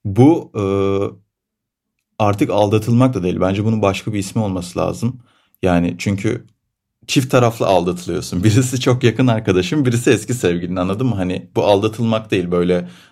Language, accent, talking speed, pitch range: Turkish, native, 145 wpm, 95-120 Hz